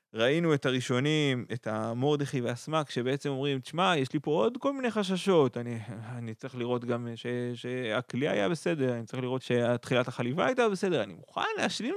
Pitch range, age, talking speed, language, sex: 115-150 Hz, 20-39, 170 wpm, Hebrew, male